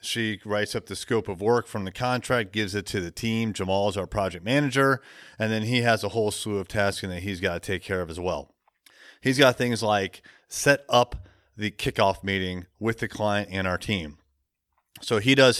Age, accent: 30-49, American